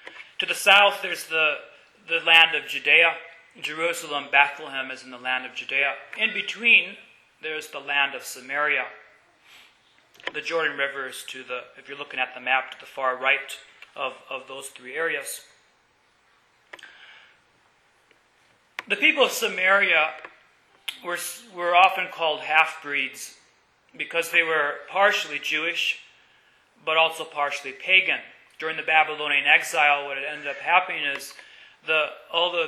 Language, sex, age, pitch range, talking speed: English, male, 30-49, 140-170 Hz, 135 wpm